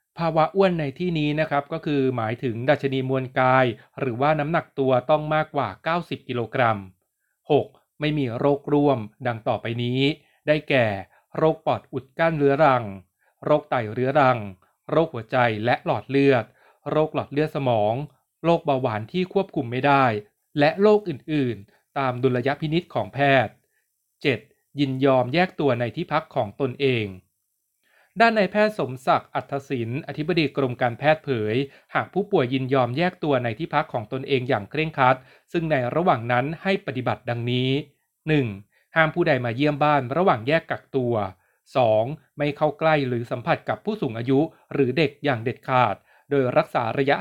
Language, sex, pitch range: Thai, male, 125-155 Hz